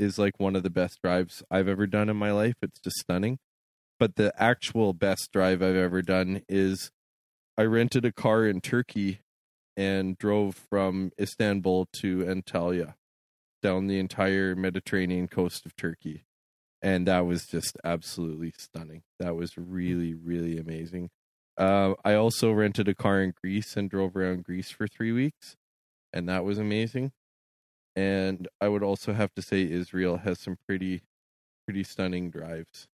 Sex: male